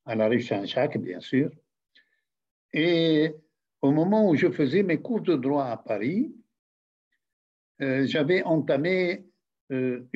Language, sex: English, male